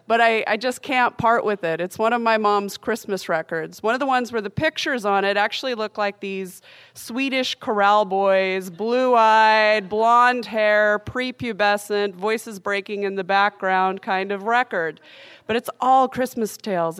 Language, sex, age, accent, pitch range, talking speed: English, female, 30-49, American, 185-240 Hz, 170 wpm